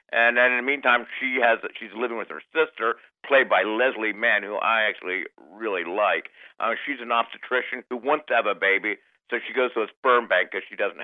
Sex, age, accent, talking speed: male, 50-69, American, 225 wpm